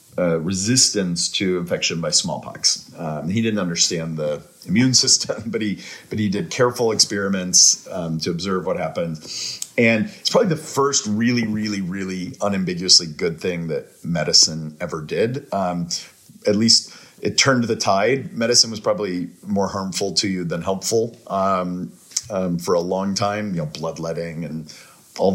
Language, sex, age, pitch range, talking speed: English, male, 40-59, 90-115 Hz, 160 wpm